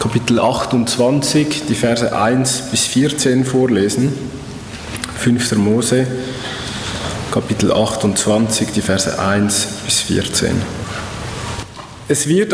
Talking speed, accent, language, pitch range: 90 wpm, Austrian, German, 105-135 Hz